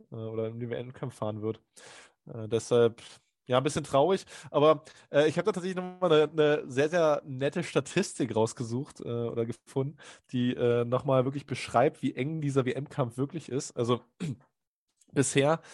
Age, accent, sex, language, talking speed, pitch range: 20-39, German, male, German, 155 wpm, 120-150 Hz